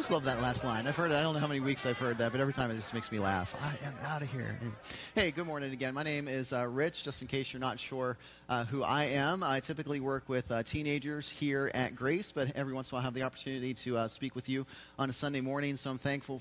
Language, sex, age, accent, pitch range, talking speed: English, male, 30-49, American, 120-145 Hz, 295 wpm